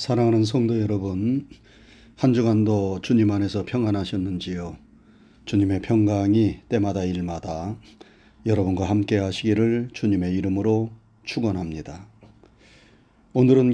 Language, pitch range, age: Korean, 100-125 Hz, 40-59